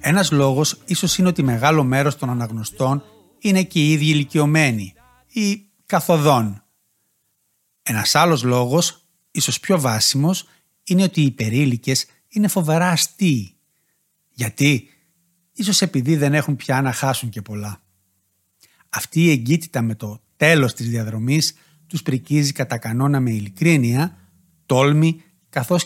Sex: male